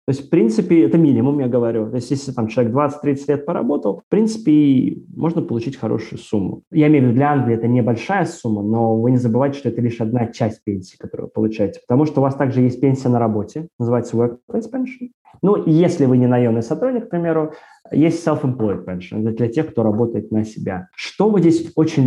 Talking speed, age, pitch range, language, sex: 210 wpm, 20-39, 115-155 Hz, Russian, male